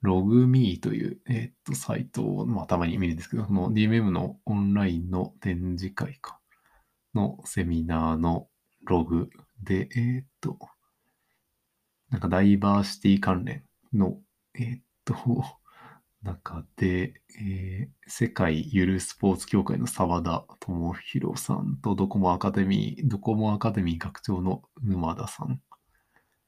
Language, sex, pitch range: Japanese, male, 95-115 Hz